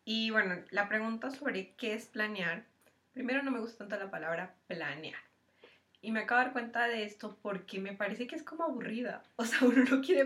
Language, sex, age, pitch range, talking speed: Spanish, female, 20-39, 200-240 Hz, 210 wpm